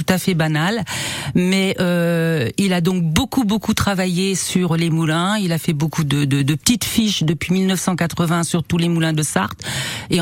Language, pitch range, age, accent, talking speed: French, 160-200 Hz, 50-69, French, 195 wpm